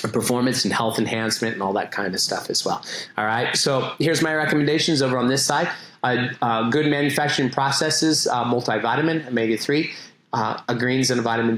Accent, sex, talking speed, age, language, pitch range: American, male, 180 wpm, 30-49, English, 110-135 Hz